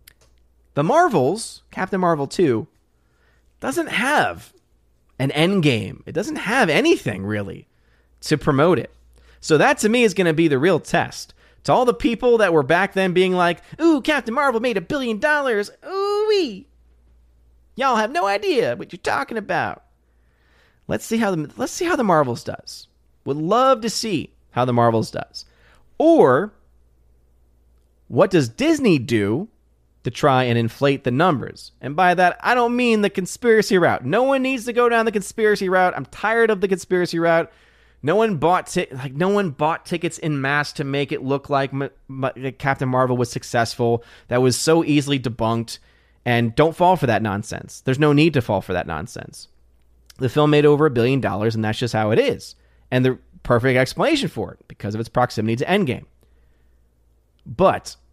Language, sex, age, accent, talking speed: English, male, 30-49, American, 180 wpm